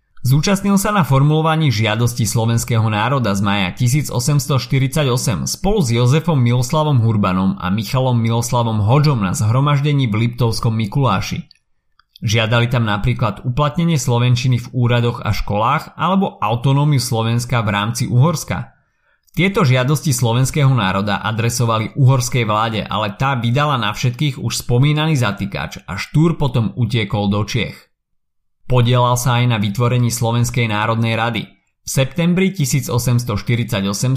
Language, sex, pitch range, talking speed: Slovak, male, 110-145 Hz, 125 wpm